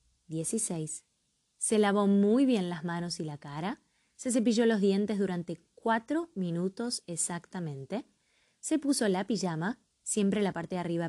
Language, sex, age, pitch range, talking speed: Spanish, female, 20-39, 180-245 Hz, 145 wpm